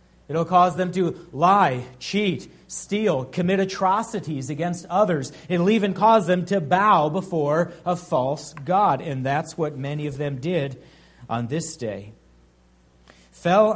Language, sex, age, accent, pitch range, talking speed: English, male, 40-59, American, 125-195 Hz, 140 wpm